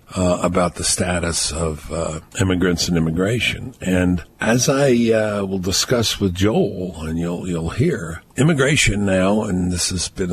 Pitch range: 90-110 Hz